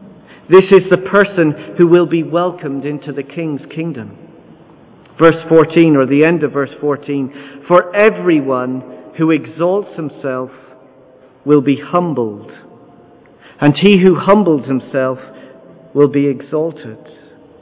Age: 50-69